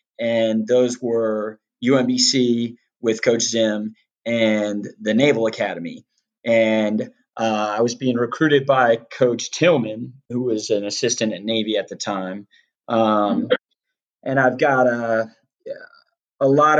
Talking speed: 130 wpm